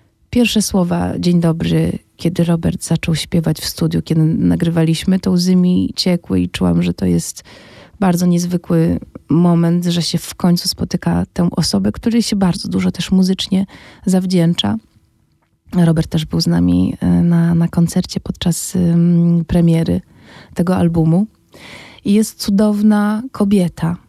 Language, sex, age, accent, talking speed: Polish, female, 20-39, native, 135 wpm